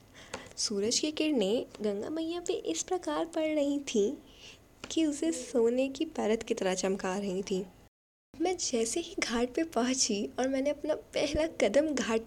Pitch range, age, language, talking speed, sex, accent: 220-320 Hz, 10-29, Hindi, 165 wpm, female, native